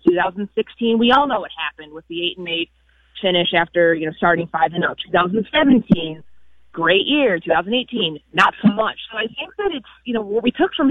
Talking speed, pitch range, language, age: 205 wpm, 170-230 Hz, English, 30-49